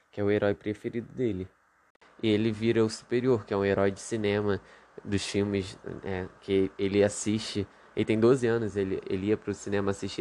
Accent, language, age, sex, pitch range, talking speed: Brazilian, Portuguese, 20-39, male, 100-115 Hz, 195 wpm